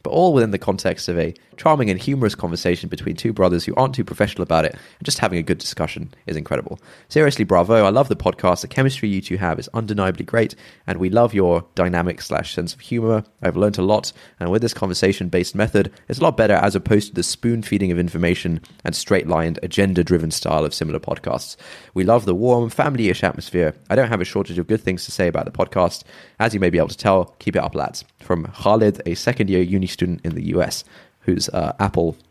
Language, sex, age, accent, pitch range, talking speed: English, male, 20-39, British, 90-120 Hz, 230 wpm